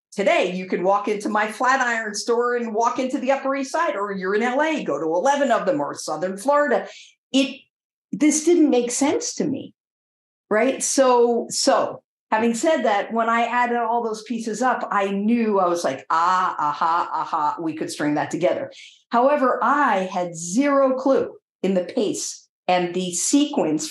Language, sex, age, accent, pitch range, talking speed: English, female, 50-69, American, 180-260 Hz, 180 wpm